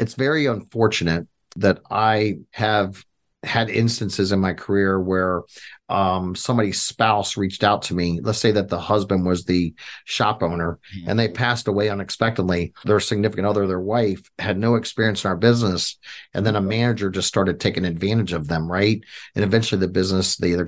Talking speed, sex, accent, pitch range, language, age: 175 wpm, male, American, 95-110 Hz, English, 50-69